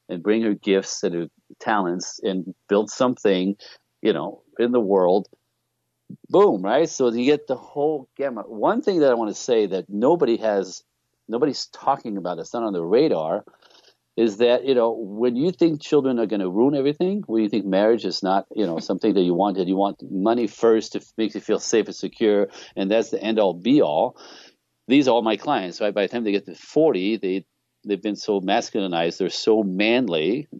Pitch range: 95-120 Hz